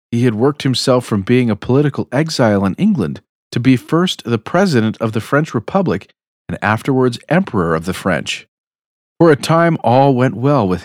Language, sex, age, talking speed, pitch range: English, male, 40-59, 185 wpm, 115-165 Hz